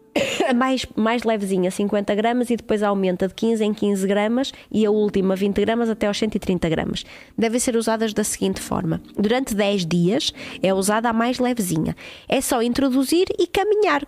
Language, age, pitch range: Portuguese, 20-39, 195-250 Hz